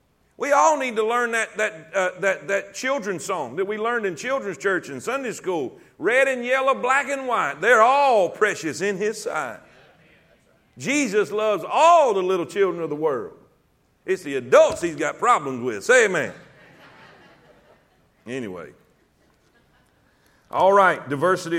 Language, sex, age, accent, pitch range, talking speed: English, male, 50-69, American, 180-240 Hz, 155 wpm